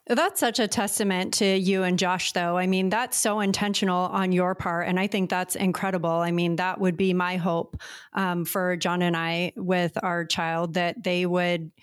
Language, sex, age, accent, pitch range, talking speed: English, female, 30-49, American, 185-235 Hz, 205 wpm